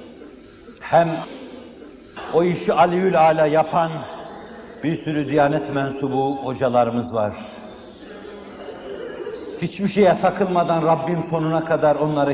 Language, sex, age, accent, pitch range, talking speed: Turkish, male, 60-79, native, 145-230 Hz, 90 wpm